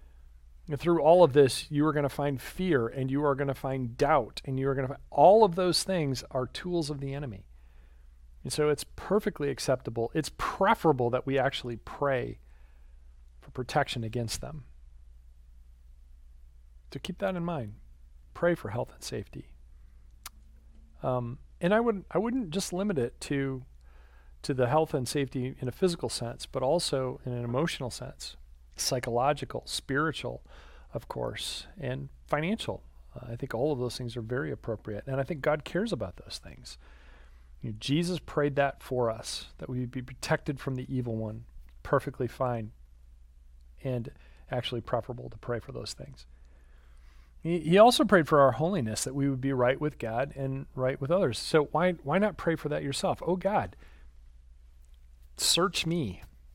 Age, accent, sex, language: 40-59, American, male, English